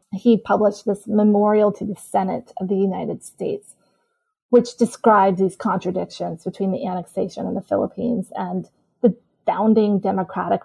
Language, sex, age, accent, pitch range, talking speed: English, female, 30-49, American, 185-225 Hz, 140 wpm